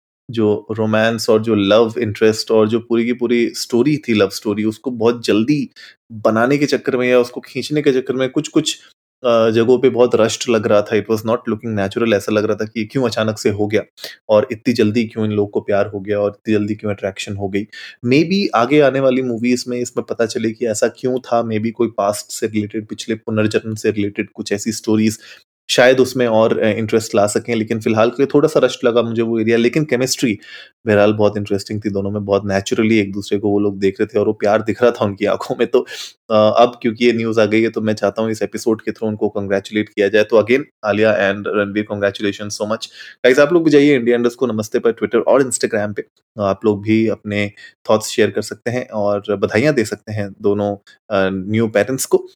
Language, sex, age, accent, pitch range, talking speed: Hindi, male, 20-39, native, 105-120 Hz, 215 wpm